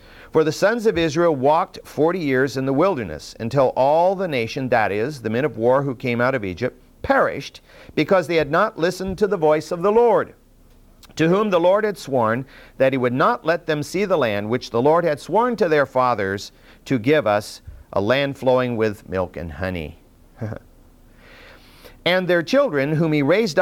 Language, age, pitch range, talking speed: English, 50-69, 120-170 Hz, 195 wpm